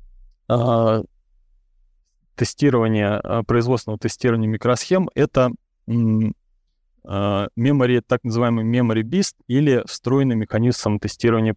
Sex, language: male, Russian